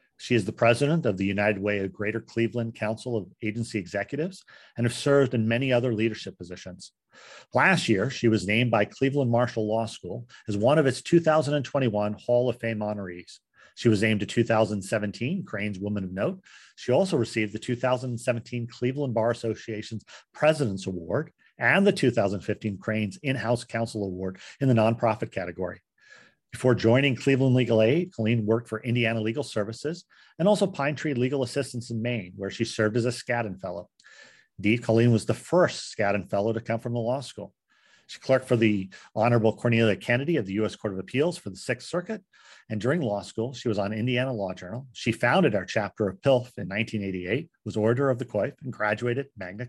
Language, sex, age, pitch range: English, male, 50-69, 105-130 Hz